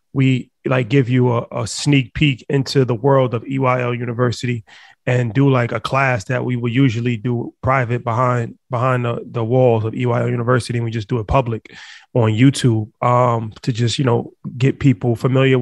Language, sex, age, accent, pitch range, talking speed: English, male, 30-49, American, 120-135 Hz, 190 wpm